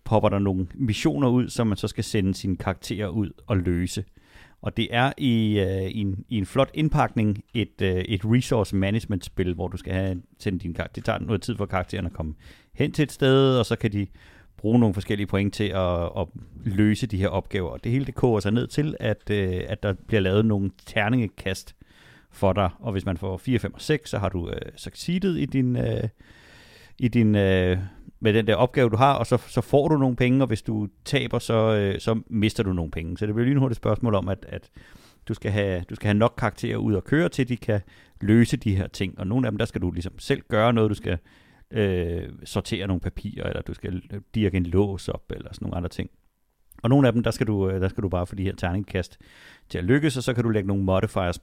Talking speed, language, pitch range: 245 wpm, Danish, 95-120 Hz